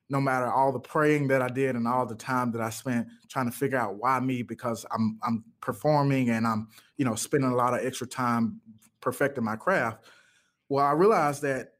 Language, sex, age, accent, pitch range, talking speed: English, male, 20-39, American, 115-135 Hz, 215 wpm